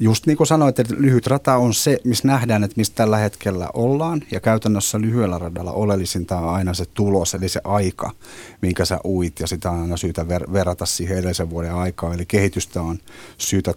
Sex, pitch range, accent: male, 90-110 Hz, native